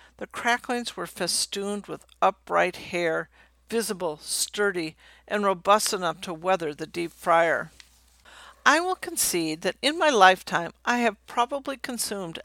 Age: 60-79